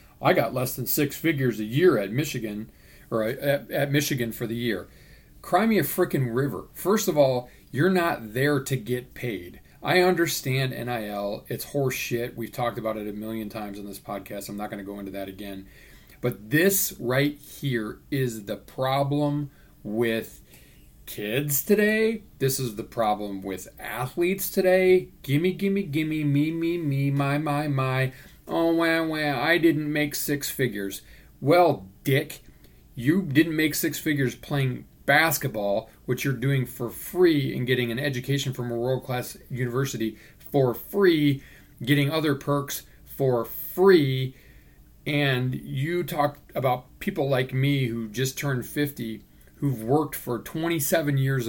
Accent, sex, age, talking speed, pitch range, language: American, male, 40-59, 155 wpm, 120-150 Hz, English